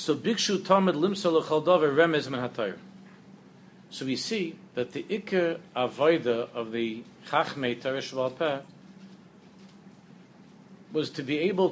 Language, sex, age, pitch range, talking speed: English, male, 50-69, 155-195 Hz, 110 wpm